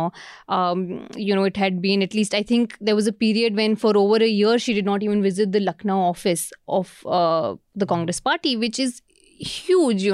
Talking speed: 215 wpm